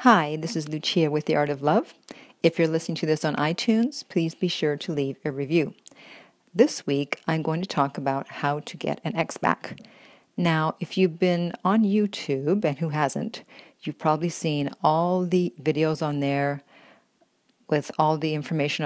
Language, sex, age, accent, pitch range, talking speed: English, female, 50-69, American, 150-180 Hz, 180 wpm